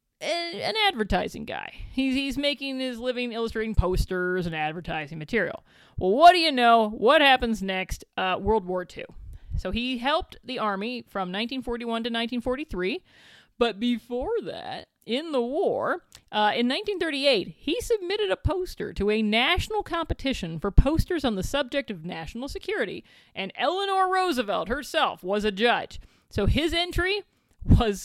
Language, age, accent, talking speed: English, 40-59, American, 150 wpm